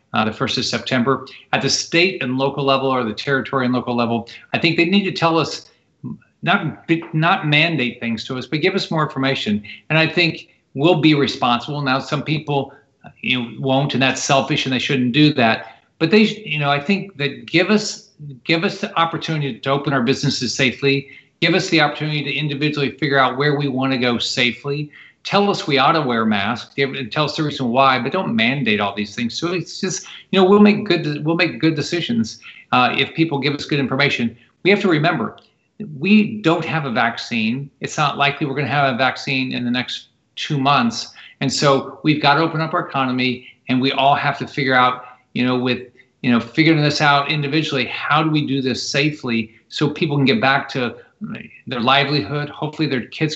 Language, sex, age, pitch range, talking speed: Spanish, male, 50-69, 130-160 Hz, 215 wpm